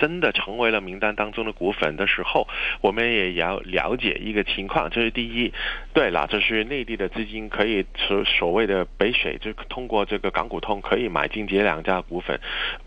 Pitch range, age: 95-115 Hz, 20-39